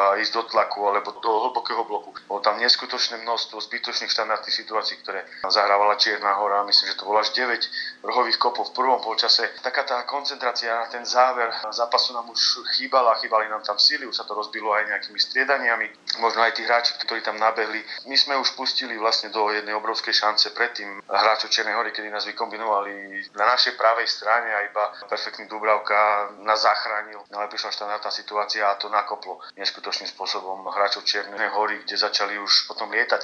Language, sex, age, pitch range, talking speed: Slovak, male, 30-49, 105-115 Hz, 185 wpm